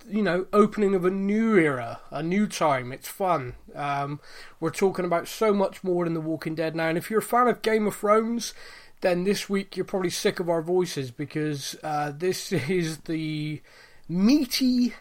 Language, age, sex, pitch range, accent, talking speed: English, 20-39, male, 150-195 Hz, British, 190 wpm